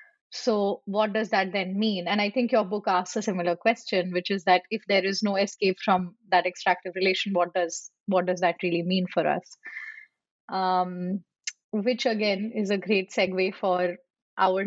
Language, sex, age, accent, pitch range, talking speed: English, female, 20-39, Indian, 200-240 Hz, 185 wpm